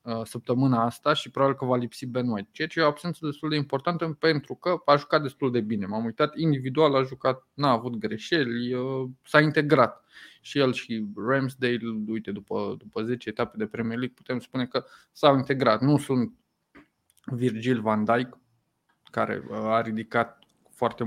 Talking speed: 170 wpm